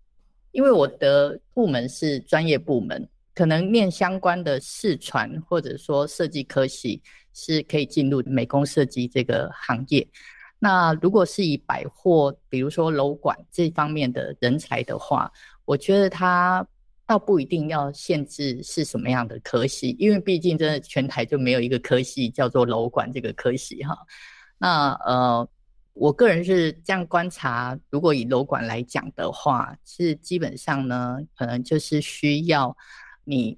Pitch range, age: 135-170 Hz, 30-49